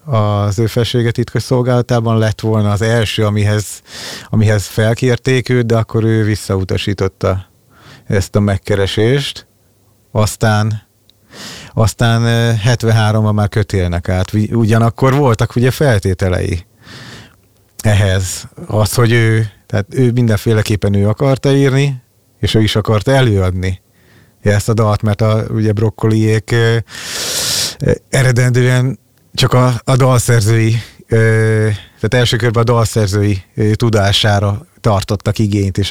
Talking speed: 120 wpm